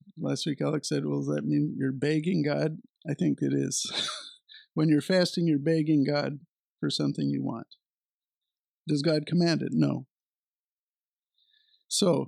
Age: 50-69